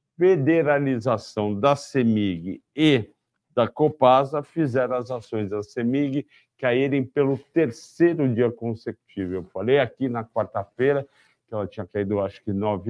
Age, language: 50-69, Portuguese